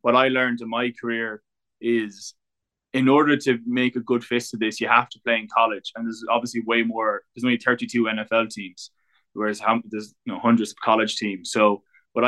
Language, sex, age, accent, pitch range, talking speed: English, male, 20-39, Irish, 110-120 Hz, 205 wpm